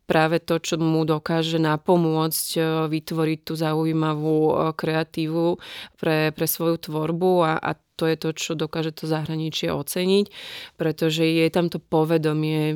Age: 30-49